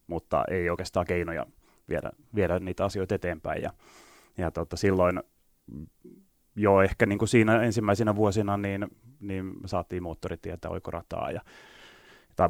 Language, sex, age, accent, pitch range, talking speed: Finnish, male, 30-49, native, 85-105 Hz, 130 wpm